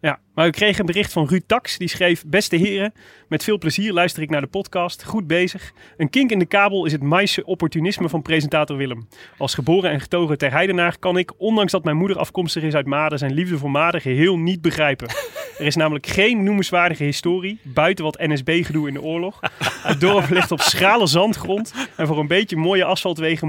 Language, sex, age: Dutch, male, 30-49